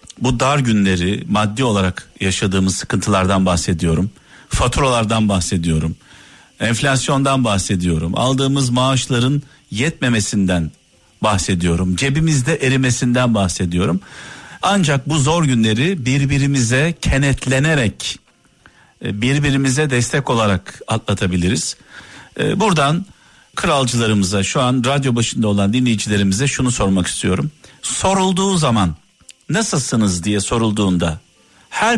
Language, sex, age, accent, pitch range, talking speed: Turkish, male, 50-69, native, 105-145 Hz, 85 wpm